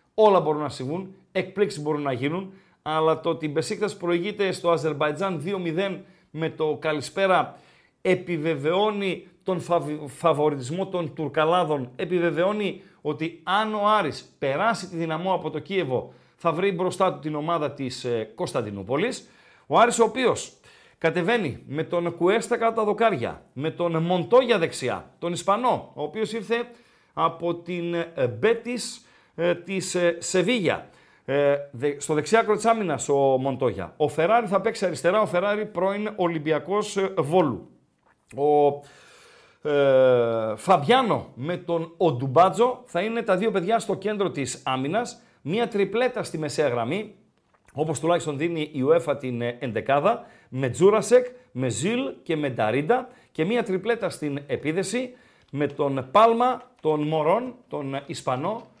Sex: male